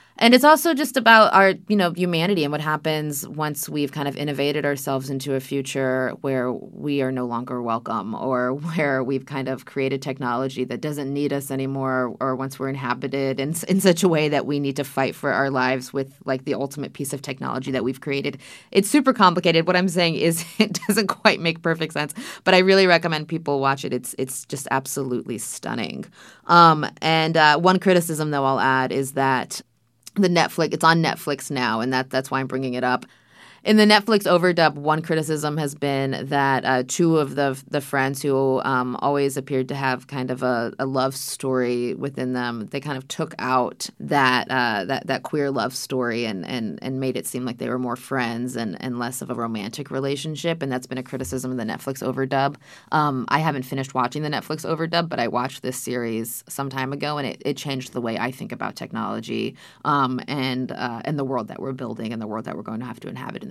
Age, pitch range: 20-39, 130-155 Hz